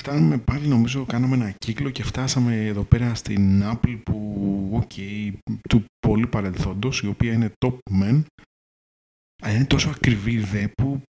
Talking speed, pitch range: 145 wpm, 100-115 Hz